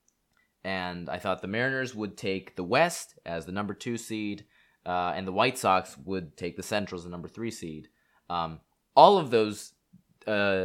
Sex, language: male, English